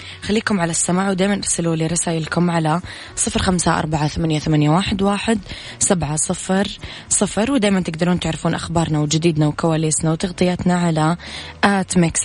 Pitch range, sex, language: 165-190 Hz, female, Arabic